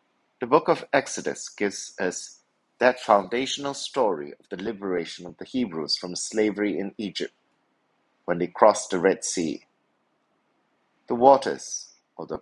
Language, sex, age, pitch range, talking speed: English, male, 50-69, 90-120 Hz, 135 wpm